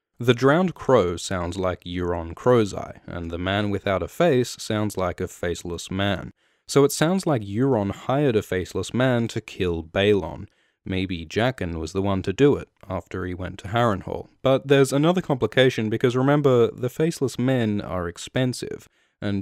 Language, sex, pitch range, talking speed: English, male, 95-135 Hz, 175 wpm